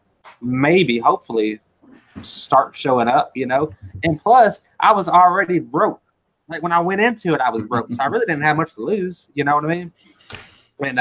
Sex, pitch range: male, 125-160 Hz